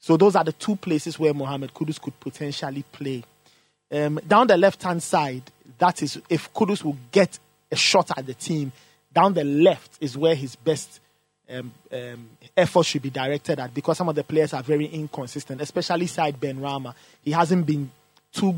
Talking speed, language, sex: 185 wpm, English, male